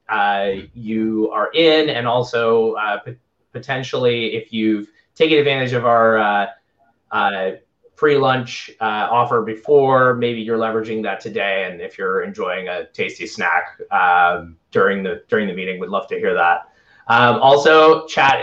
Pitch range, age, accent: 110-135 Hz, 20-39, American